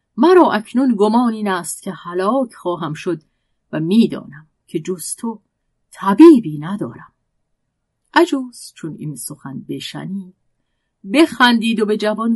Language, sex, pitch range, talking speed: Persian, female, 175-240 Hz, 120 wpm